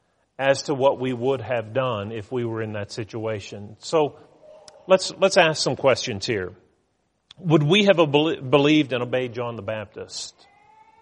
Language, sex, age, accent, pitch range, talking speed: English, male, 40-59, American, 140-205 Hz, 160 wpm